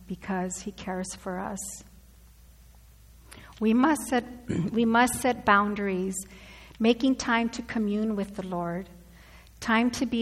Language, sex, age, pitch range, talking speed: English, female, 50-69, 185-225 Hz, 130 wpm